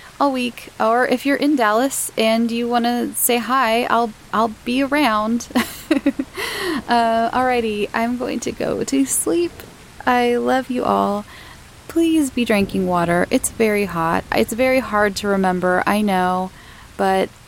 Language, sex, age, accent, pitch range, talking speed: English, female, 20-39, American, 195-260 Hz, 150 wpm